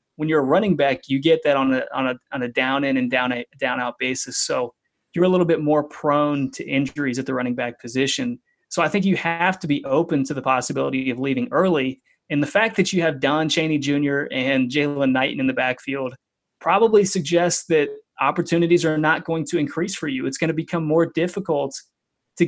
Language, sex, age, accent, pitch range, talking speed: English, male, 30-49, American, 130-165 Hz, 220 wpm